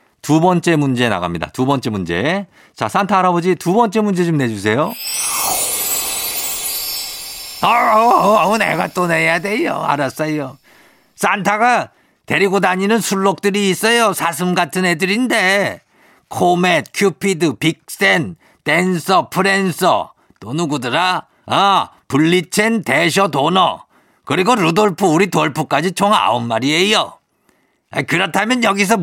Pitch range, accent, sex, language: 130-195 Hz, native, male, Korean